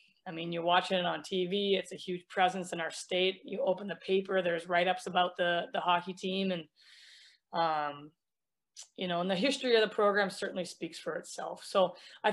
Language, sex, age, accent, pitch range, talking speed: English, female, 20-39, American, 175-200 Hz, 205 wpm